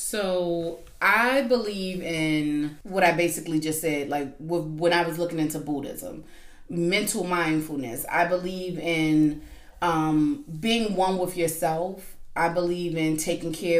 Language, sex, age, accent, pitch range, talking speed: English, female, 20-39, American, 155-180 Hz, 135 wpm